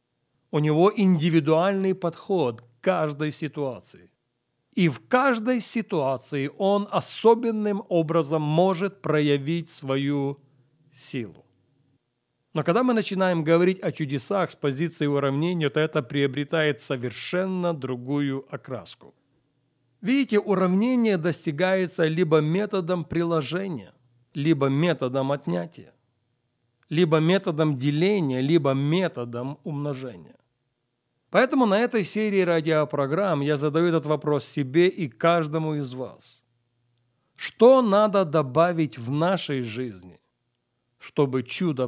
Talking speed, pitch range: 100 wpm, 130-185 Hz